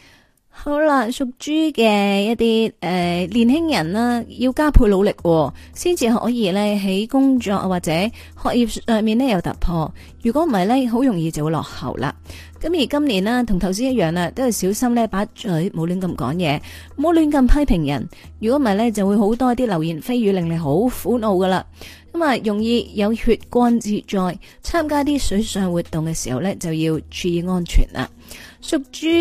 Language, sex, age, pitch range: Chinese, female, 30-49, 180-245 Hz